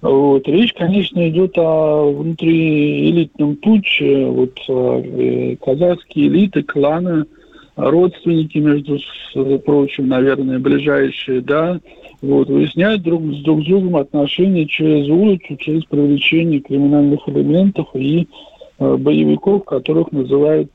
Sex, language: male, Russian